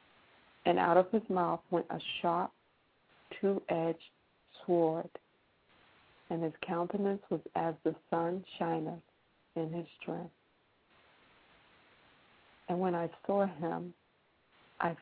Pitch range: 165-195 Hz